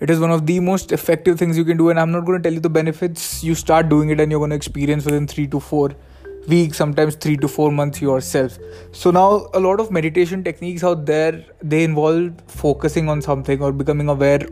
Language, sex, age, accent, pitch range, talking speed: English, male, 20-39, Indian, 140-170 Hz, 235 wpm